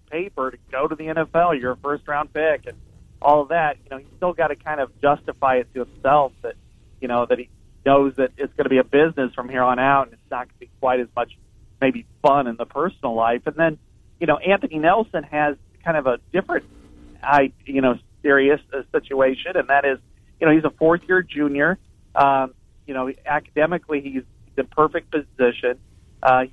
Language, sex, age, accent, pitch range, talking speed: English, male, 40-59, American, 125-150 Hz, 210 wpm